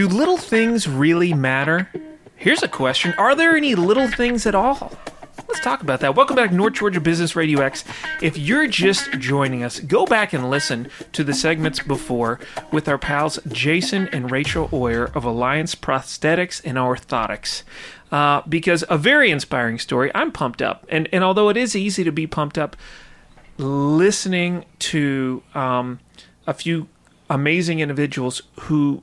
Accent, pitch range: American, 135-180 Hz